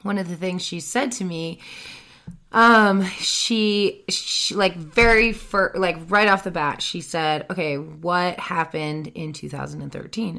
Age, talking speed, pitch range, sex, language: 30-49, 170 wpm, 170-210 Hz, female, English